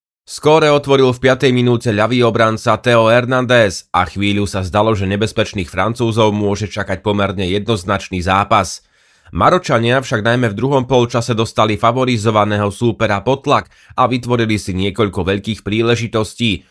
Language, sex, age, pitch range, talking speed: Slovak, male, 30-49, 100-120 Hz, 135 wpm